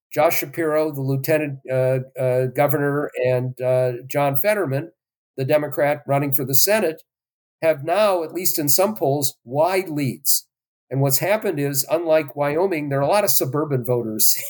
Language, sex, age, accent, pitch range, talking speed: English, male, 50-69, American, 130-155 Hz, 160 wpm